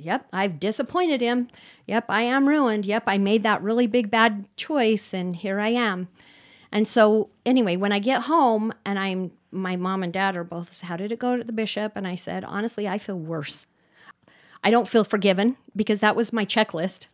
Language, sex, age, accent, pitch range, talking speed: English, female, 40-59, American, 180-225 Hz, 205 wpm